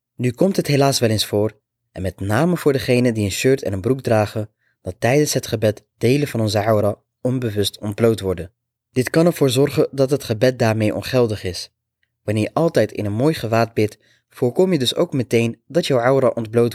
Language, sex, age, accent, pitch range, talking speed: Dutch, male, 20-39, Dutch, 105-135 Hz, 205 wpm